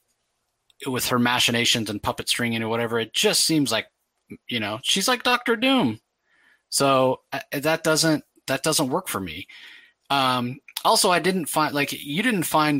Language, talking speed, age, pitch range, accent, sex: English, 170 wpm, 30-49, 115-150 Hz, American, male